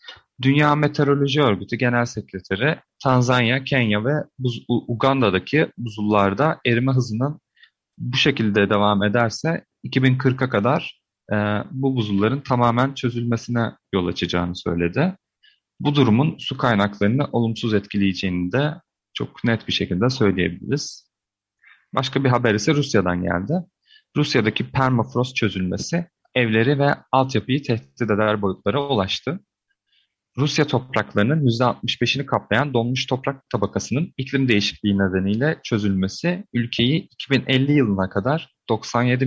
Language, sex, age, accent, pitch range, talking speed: Turkish, male, 40-59, native, 100-135 Hz, 105 wpm